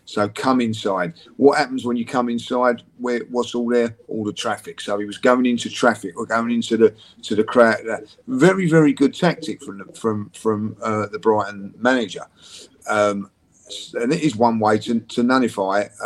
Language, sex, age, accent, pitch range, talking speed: English, male, 40-59, British, 105-145 Hz, 190 wpm